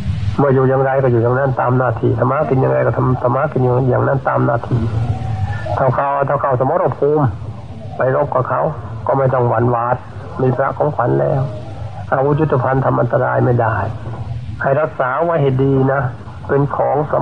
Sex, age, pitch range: male, 60-79, 115-135 Hz